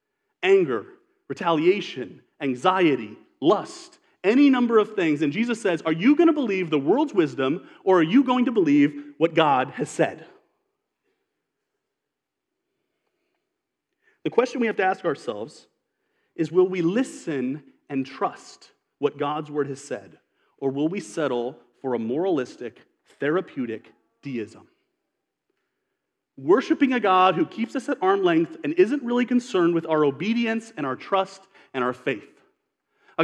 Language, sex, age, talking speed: English, male, 30-49, 145 wpm